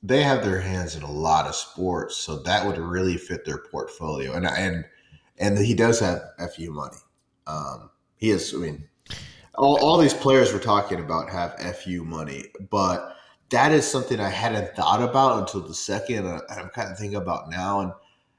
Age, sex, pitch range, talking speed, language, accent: 30-49, male, 85-120 Hz, 195 wpm, English, American